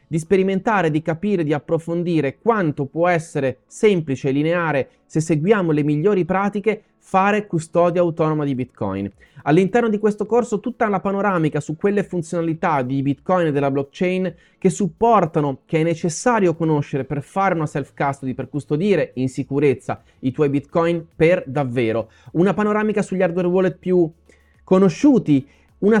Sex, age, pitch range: male, 30-49, 150-195 Hz